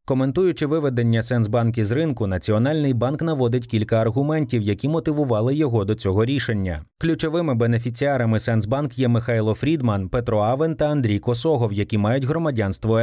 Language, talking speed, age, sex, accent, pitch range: Ukrainian, 140 wpm, 30-49, male, native, 110-140 Hz